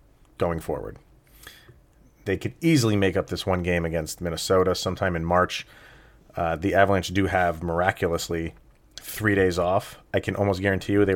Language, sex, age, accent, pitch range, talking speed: English, male, 30-49, American, 85-105 Hz, 160 wpm